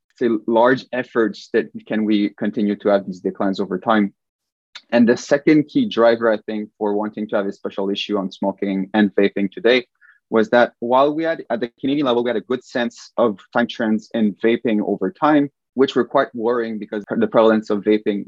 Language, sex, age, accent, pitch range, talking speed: English, male, 20-39, Canadian, 105-125 Hz, 205 wpm